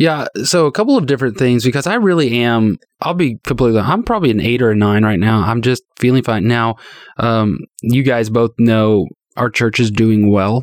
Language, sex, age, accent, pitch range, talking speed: English, male, 20-39, American, 105-125 Hz, 215 wpm